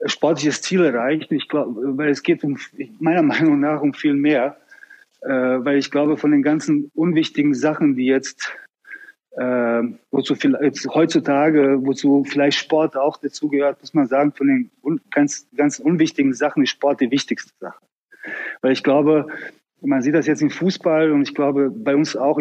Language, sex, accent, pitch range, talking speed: German, male, German, 140-170 Hz, 175 wpm